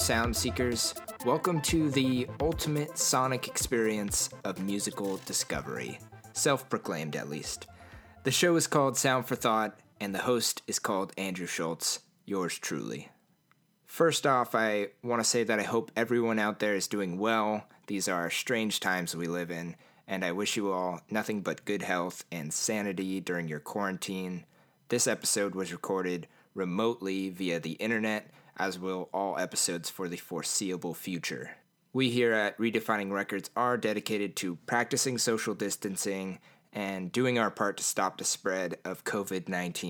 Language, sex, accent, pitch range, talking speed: English, male, American, 95-130 Hz, 155 wpm